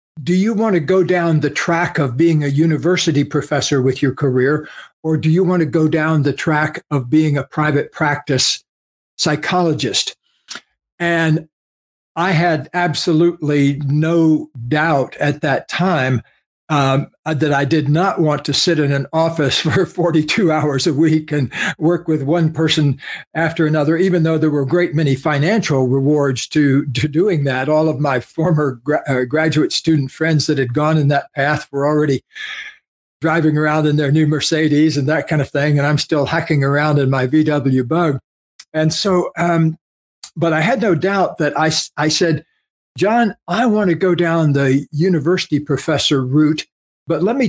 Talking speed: 175 wpm